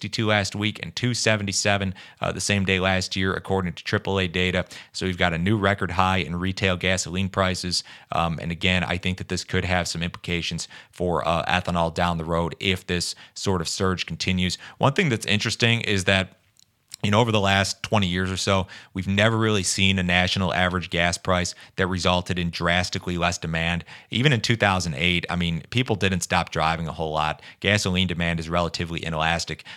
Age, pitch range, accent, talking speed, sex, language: 30-49, 85-95 Hz, American, 190 wpm, male, English